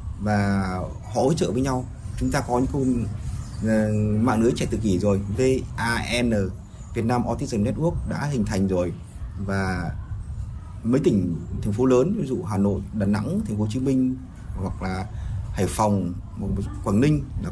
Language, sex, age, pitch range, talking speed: Vietnamese, male, 20-39, 100-125 Hz, 175 wpm